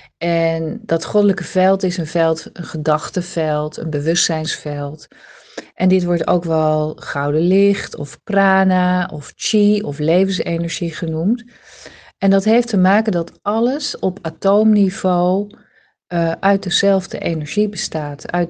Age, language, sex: 40-59, Dutch, female